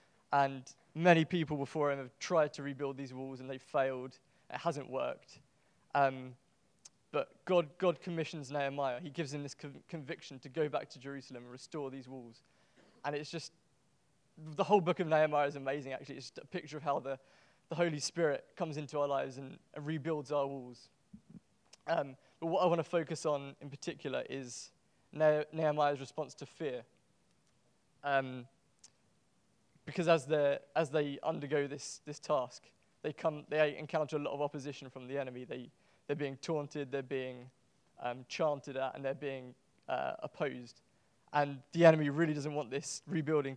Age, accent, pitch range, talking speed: 20-39, British, 135-155 Hz, 175 wpm